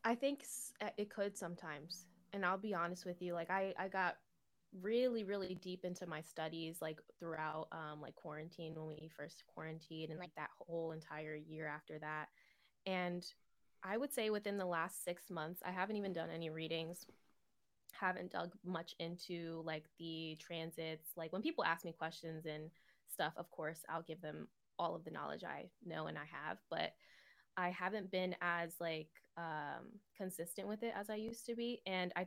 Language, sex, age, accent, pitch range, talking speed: English, female, 20-39, American, 165-195 Hz, 185 wpm